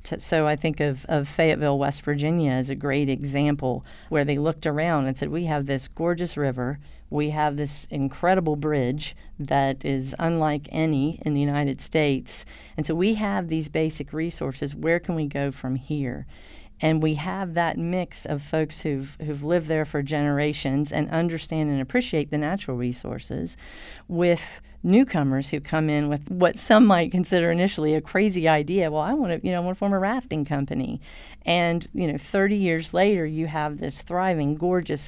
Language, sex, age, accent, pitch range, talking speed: English, female, 40-59, American, 145-170 Hz, 185 wpm